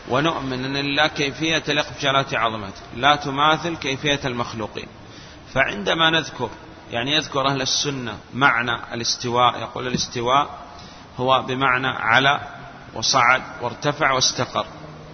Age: 40-59